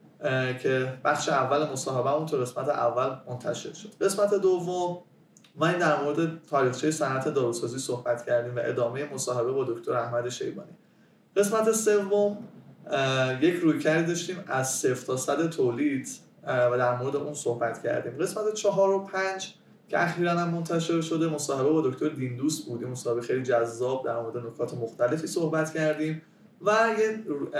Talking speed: 150 wpm